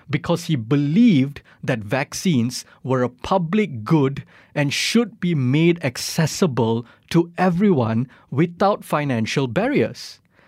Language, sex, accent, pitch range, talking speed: English, male, Malaysian, 120-175 Hz, 110 wpm